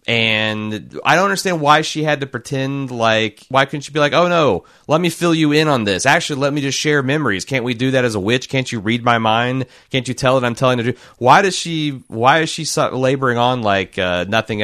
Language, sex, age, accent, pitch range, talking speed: English, male, 30-49, American, 105-140 Hz, 255 wpm